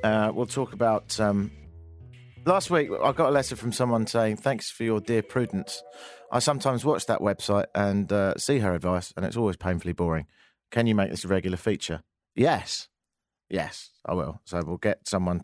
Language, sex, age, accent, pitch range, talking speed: English, male, 40-59, British, 95-140 Hz, 190 wpm